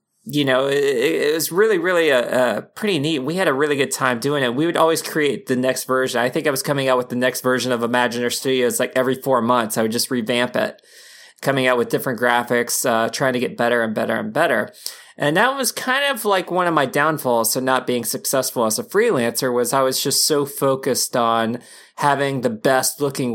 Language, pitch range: English, 120-145 Hz